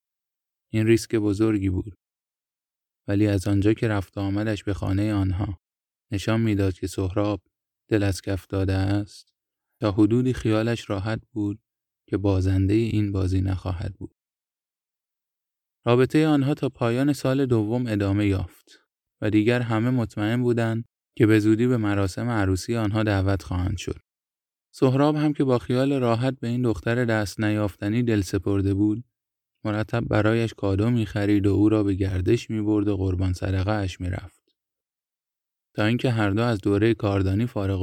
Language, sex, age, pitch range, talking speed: Persian, male, 20-39, 100-115 Hz, 150 wpm